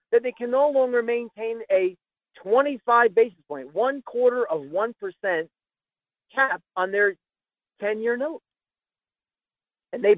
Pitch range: 180-300 Hz